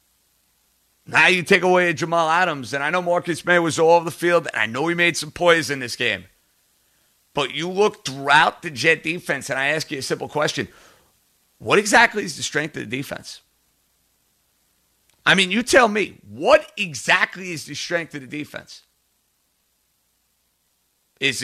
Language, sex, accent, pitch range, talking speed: English, male, American, 110-180 Hz, 175 wpm